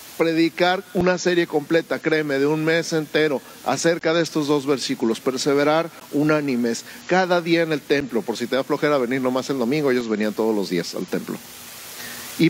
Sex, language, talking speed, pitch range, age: male, Spanish, 185 wpm, 125-170 Hz, 50-69